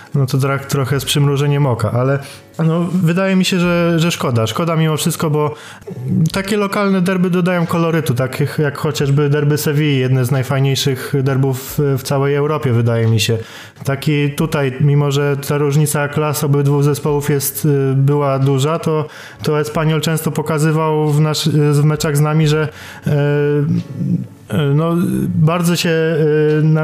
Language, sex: Polish, male